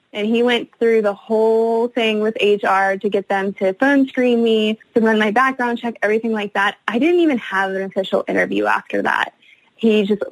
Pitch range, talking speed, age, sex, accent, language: 200-235 Hz, 205 wpm, 20-39, female, American, English